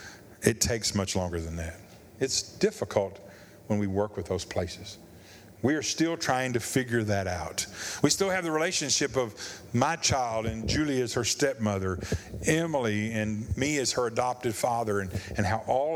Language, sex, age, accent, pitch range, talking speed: English, male, 50-69, American, 100-140 Hz, 175 wpm